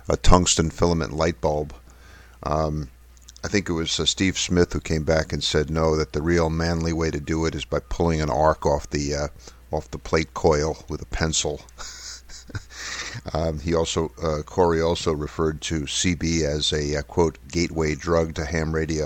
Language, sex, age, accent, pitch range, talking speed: English, male, 50-69, American, 75-85 Hz, 190 wpm